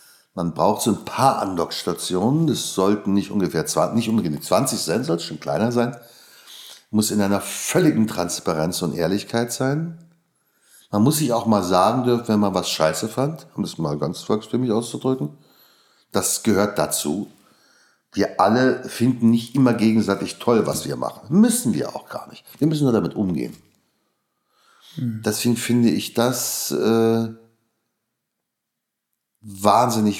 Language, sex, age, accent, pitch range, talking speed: German, male, 60-79, German, 105-130 Hz, 145 wpm